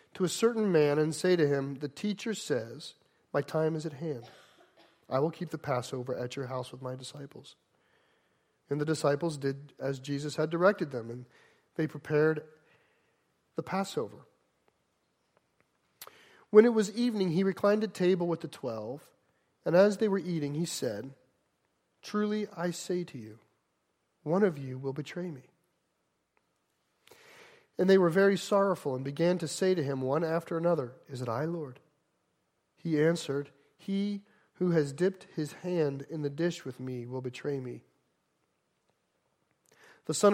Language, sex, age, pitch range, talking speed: English, male, 40-59, 140-180 Hz, 160 wpm